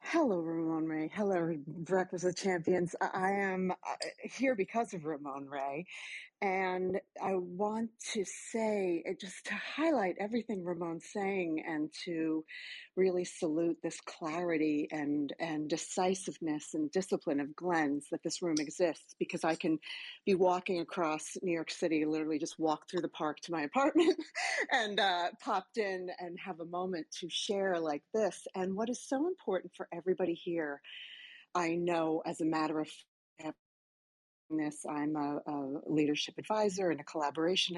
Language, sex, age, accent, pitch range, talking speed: English, female, 40-59, American, 155-190 Hz, 150 wpm